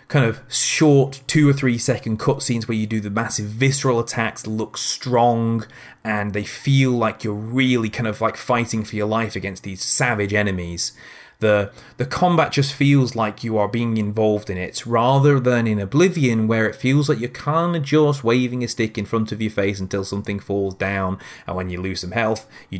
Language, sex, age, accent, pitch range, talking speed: English, male, 30-49, British, 105-130 Hz, 205 wpm